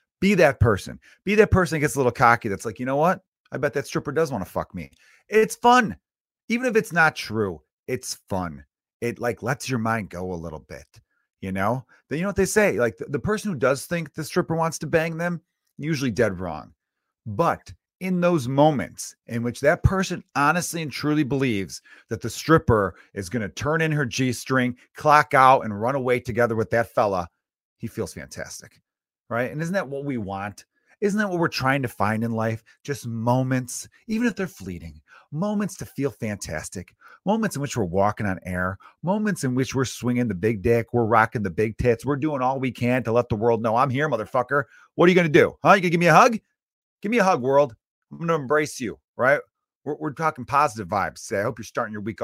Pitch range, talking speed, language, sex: 115-165 Hz, 225 wpm, English, male